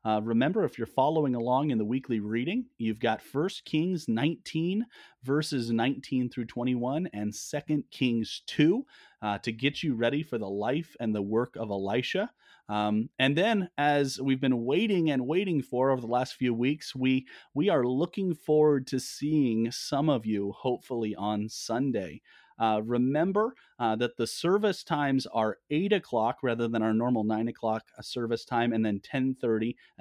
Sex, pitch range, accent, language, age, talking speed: male, 110-135 Hz, American, English, 30-49, 170 wpm